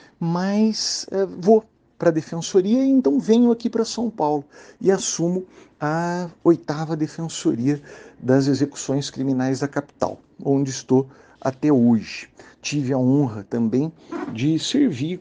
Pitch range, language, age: 120-165 Hz, Portuguese, 50-69